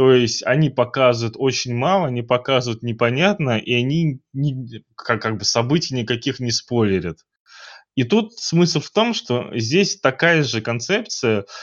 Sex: male